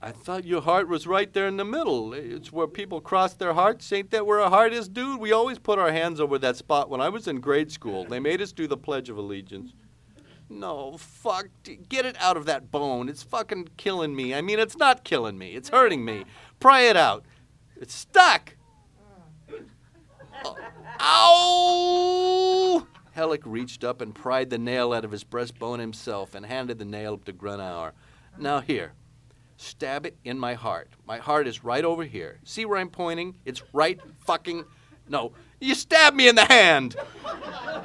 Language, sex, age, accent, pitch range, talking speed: English, male, 40-59, American, 145-240 Hz, 185 wpm